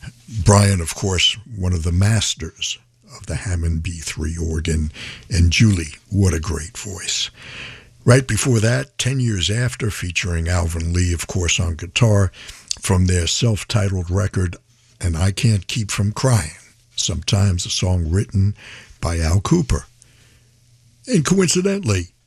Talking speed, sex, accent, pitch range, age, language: 135 wpm, male, American, 85-120 Hz, 60-79, English